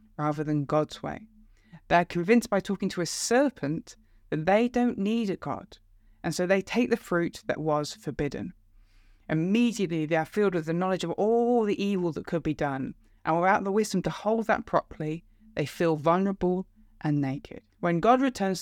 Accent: British